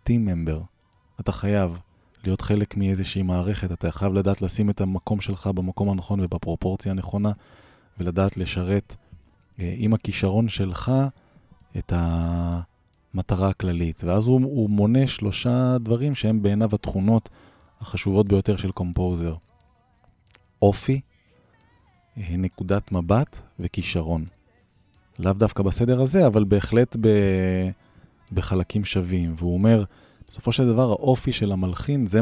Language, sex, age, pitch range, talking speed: Hebrew, male, 20-39, 90-105 Hz, 110 wpm